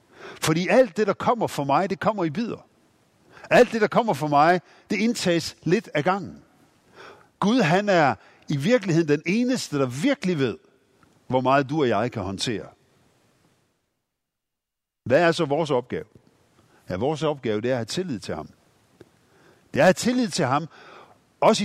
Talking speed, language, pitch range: 170 wpm, Danish, 120-175 Hz